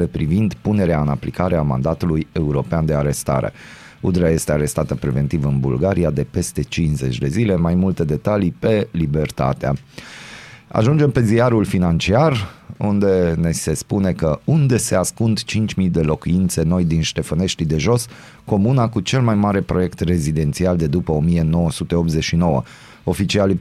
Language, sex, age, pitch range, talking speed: Romanian, male, 30-49, 80-105 Hz, 140 wpm